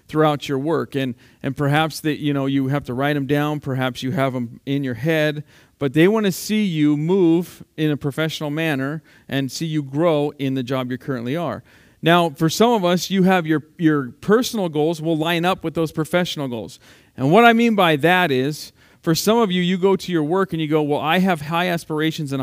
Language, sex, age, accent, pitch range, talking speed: English, male, 40-59, American, 135-165 Hz, 230 wpm